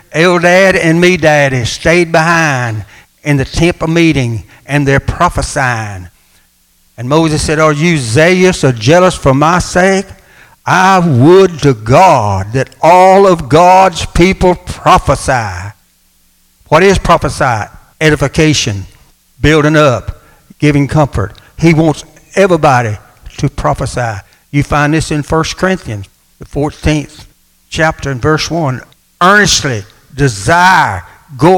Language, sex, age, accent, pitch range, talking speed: English, male, 60-79, American, 130-180 Hz, 120 wpm